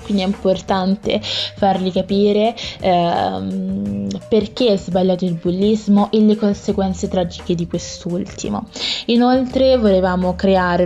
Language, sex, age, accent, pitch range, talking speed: Italian, female, 20-39, native, 175-200 Hz, 110 wpm